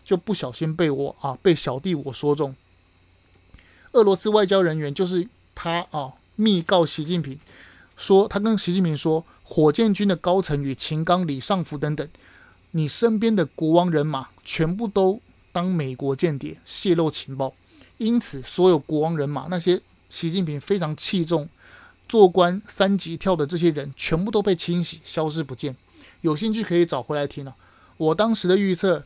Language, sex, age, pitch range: Chinese, male, 30-49, 140-185 Hz